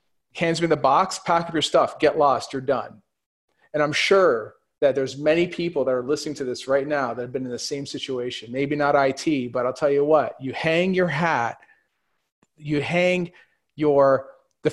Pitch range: 135-160 Hz